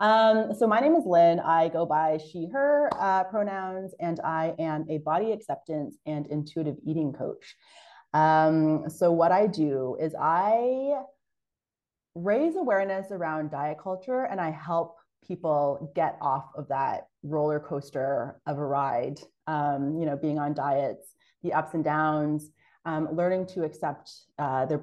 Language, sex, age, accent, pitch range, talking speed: English, female, 30-49, American, 150-185 Hz, 150 wpm